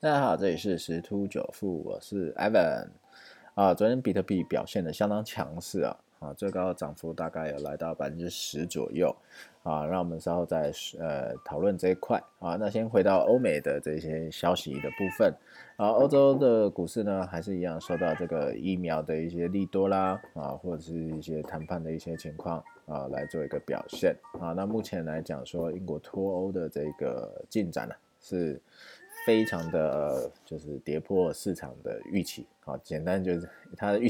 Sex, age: male, 20-39